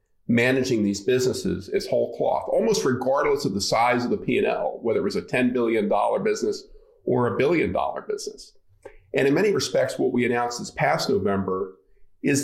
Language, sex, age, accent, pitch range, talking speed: English, male, 40-59, American, 105-145 Hz, 175 wpm